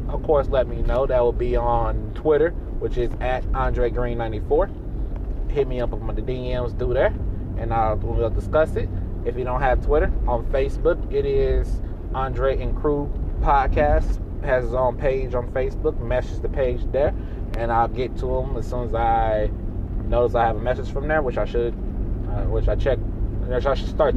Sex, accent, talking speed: male, American, 200 wpm